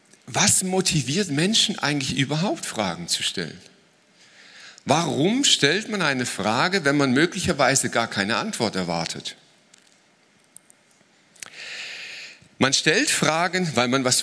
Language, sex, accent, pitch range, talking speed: German, male, German, 125-180 Hz, 110 wpm